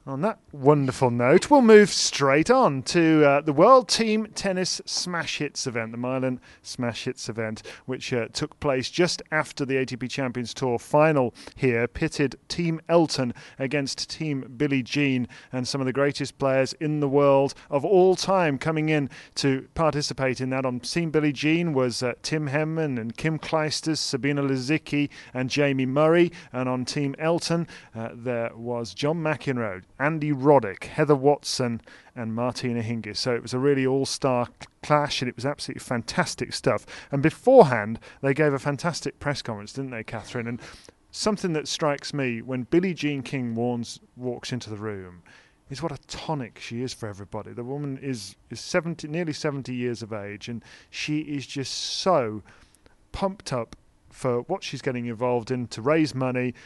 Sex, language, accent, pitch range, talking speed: male, English, British, 120-155 Hz, 170 wpm